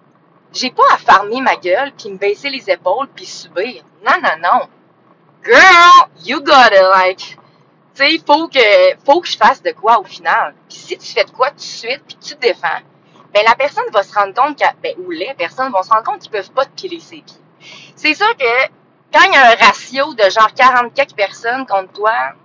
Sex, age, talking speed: female, 30-49, 220 wpm